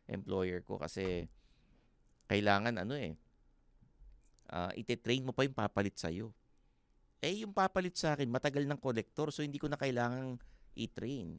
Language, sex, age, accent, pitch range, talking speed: English, male, 50-69, Filipino, 95-125 Hz, 140 wpm